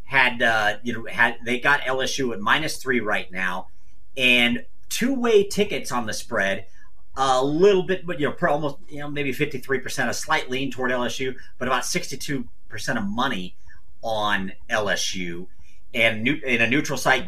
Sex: male